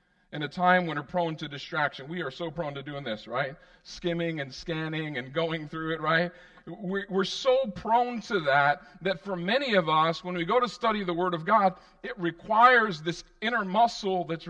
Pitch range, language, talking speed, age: 165-185 Hz, English, 205 wpm, 50-69